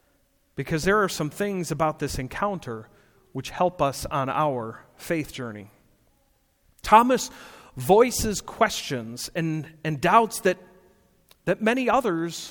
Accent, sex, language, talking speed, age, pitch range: American, male, English, 120 wpm, 40-59, 155-225 Hz